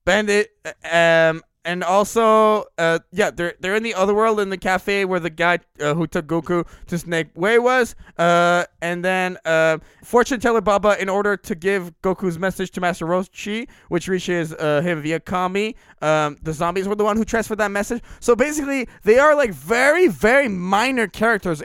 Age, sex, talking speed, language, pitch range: 20-39, male, 185 wpm, English, 175-230 Hz